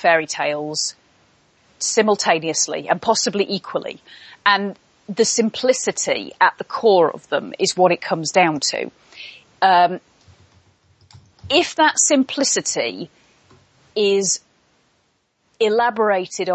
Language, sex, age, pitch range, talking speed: English, female, 30-49, 175-225 Hz, 95 wpm